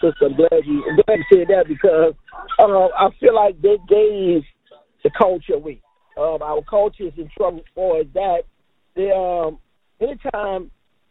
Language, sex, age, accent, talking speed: English, male, 50-69, American, 165 wpm